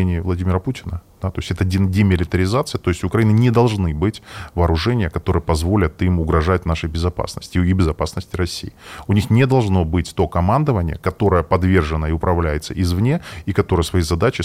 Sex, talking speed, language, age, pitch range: male, 160 wpm, Russian, 20-39, 85-110 Hz